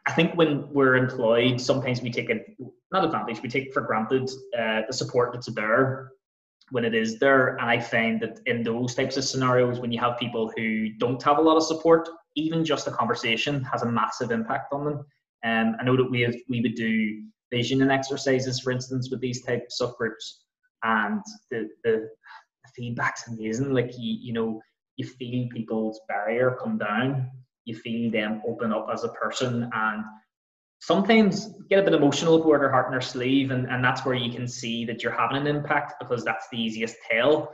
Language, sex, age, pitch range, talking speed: English, male, 20-39, 115-150 Hz, 205 wpm